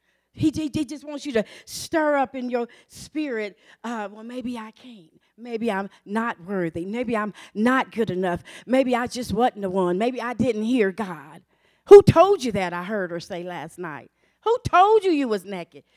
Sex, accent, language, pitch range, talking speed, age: female, American, English, 170-255 Hz, 200 wpm, 40-59